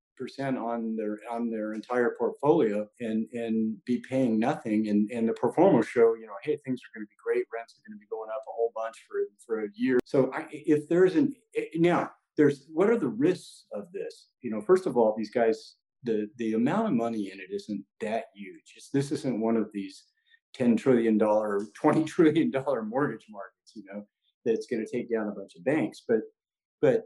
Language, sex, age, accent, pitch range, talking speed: English, male, 40-59, American, 110-160 Hz, 205 wpm